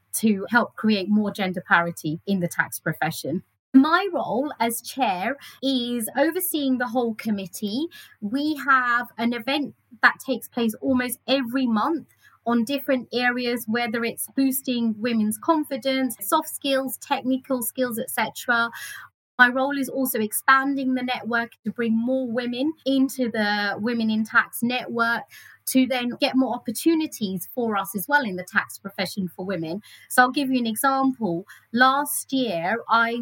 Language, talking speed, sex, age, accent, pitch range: English, 150 wpm, female, 30-49, British, 215-260 Hz